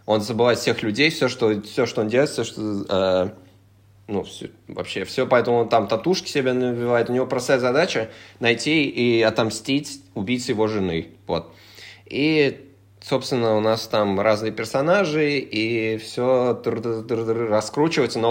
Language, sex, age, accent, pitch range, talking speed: Russian, male, 20-39, native, 105-140 Hz, 150 wpm